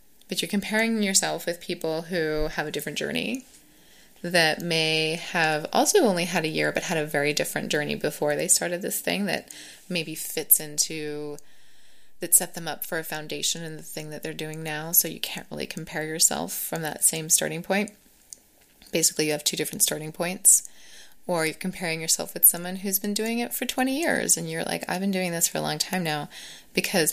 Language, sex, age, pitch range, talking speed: English, female, 20-39, 155-195 Hz, 205 wpm